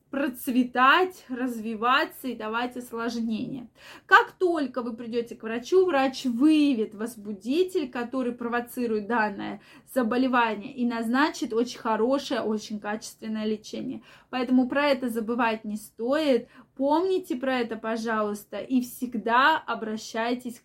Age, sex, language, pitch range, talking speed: 20-39, female, Russian, 225-280 Hz, 110 wpm